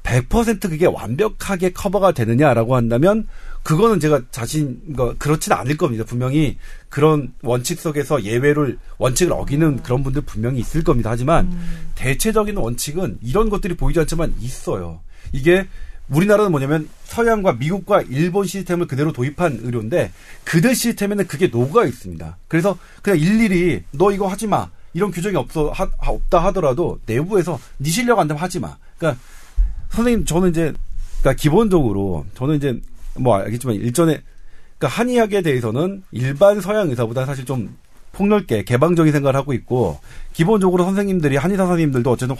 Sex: male